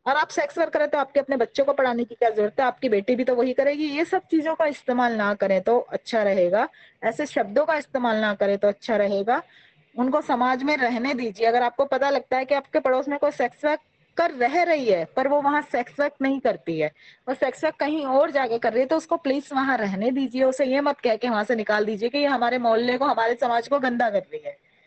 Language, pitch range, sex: English, 235-290 Hz, female